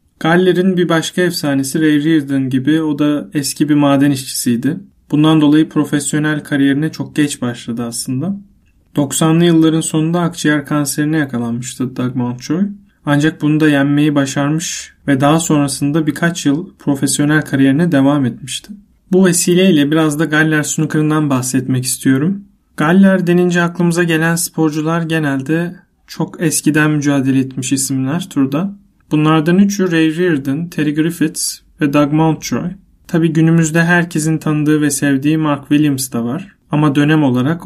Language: Turkish